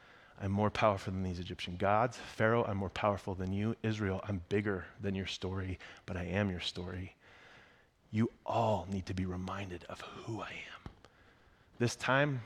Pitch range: 95-120 Hz